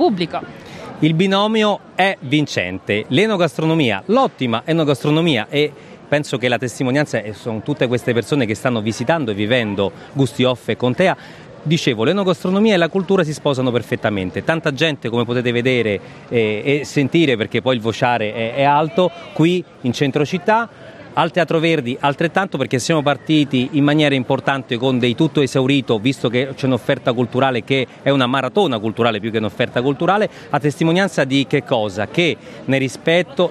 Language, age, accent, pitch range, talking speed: Italian, 40-59, native, 125-165 Hz, 160 wpm